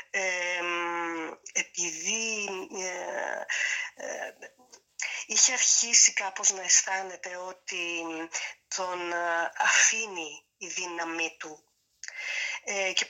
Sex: female